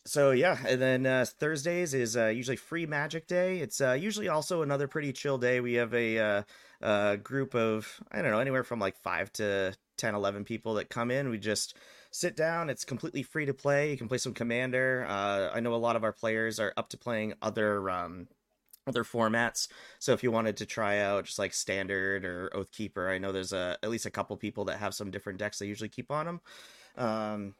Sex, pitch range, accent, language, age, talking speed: male, 100-130 Hz, American, English, 30-49, 225 wpm